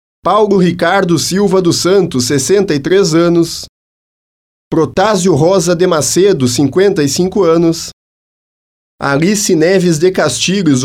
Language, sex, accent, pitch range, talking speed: Portuguese, male, Brazilian, 145-190 Hz, 95 wpm